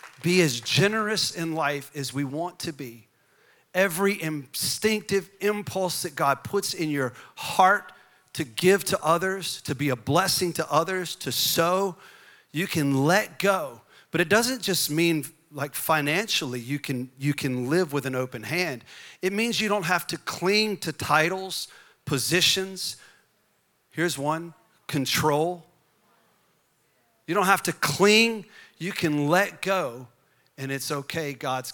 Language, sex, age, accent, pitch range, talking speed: English, male, 40-59, American, 140-180 Hz, 145 wpm